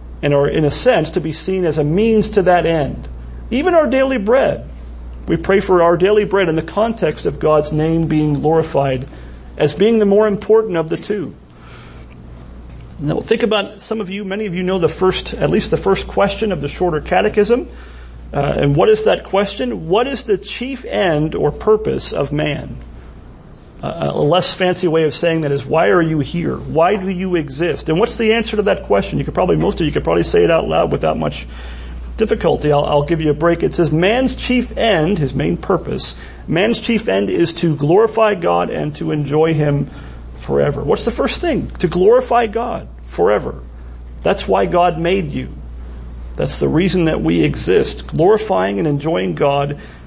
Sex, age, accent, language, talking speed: male, 40-59, American, English, 195 wpm